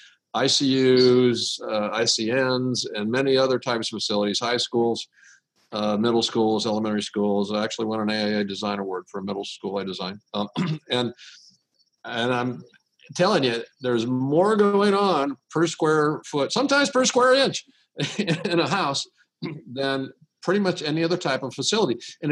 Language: English